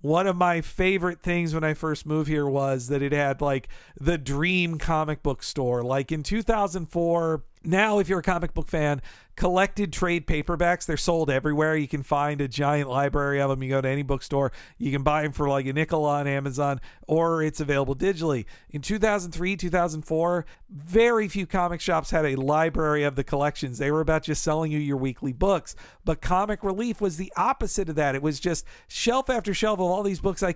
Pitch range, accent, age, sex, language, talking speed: 145-175 Hz, American, 50-69, male, English, 200 wpm